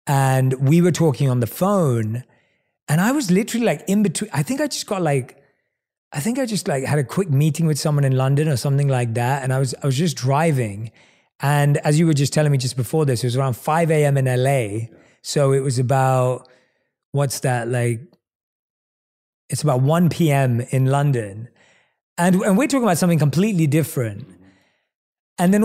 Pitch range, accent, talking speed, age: 130-170 Hz, British, 190 wpm, 30-49